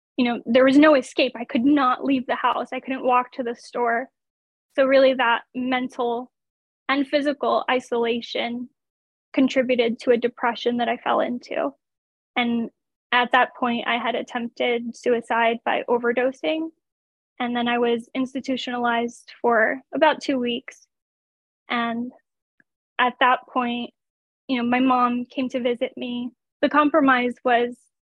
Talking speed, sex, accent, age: 145 wpm, female, American, 10-29